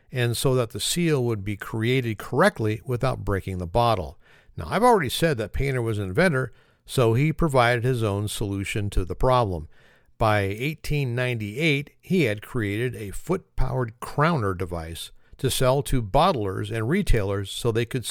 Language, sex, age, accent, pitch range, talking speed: English, male, 50-69, American, 105-140 Hz, 160 wpm